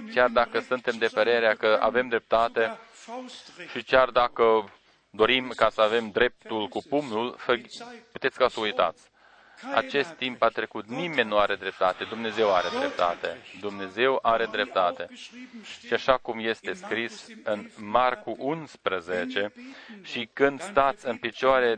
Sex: male